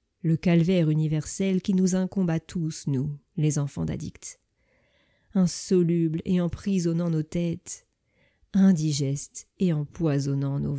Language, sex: French, female